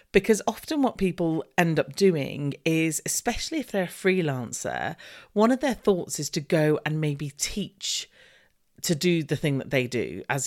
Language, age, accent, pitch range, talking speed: English, 40-59, British, 140-195 Hz, 180 wpm